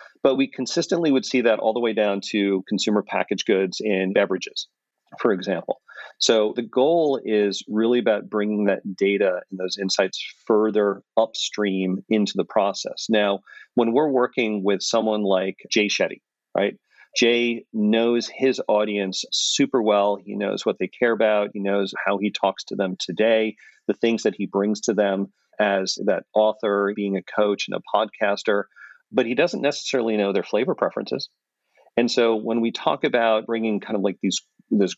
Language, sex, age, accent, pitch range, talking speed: English, male, 40-59, American, 100-115 Hz, 175 wpm